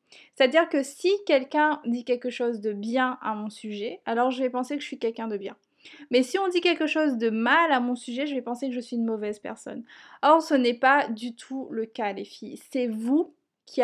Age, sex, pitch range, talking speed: 20-39, female, 235-290 Hz, 240 wpm